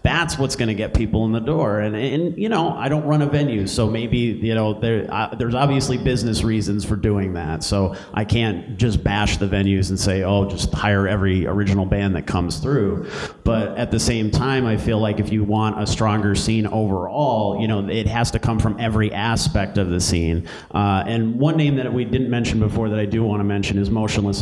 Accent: American